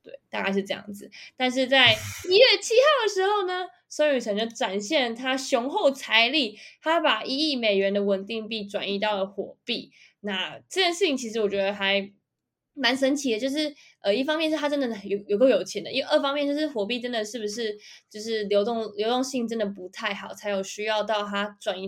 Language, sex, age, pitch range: Chinese, female, 20-39, 200-265 Hz